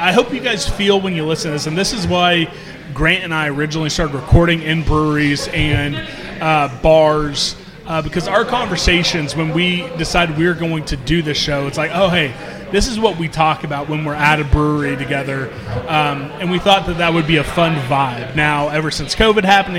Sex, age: male, 30-49